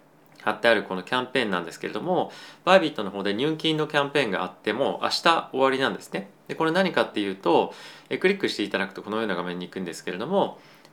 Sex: male